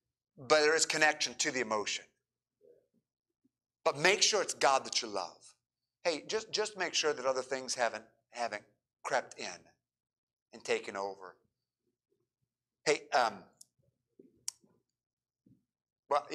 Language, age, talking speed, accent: English, 50-69, 120 wpm, American